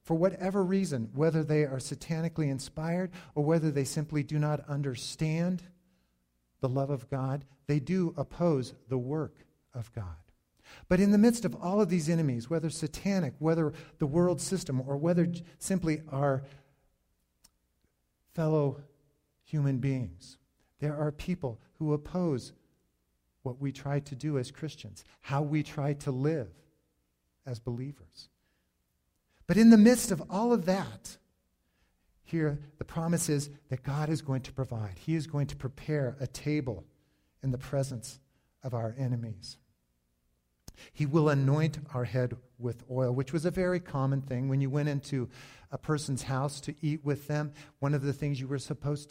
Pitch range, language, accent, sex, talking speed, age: 125-155 Hz, English, American, male, 160 wpm, 50-69